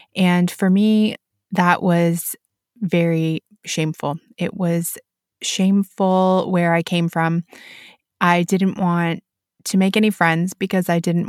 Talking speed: 130 wpm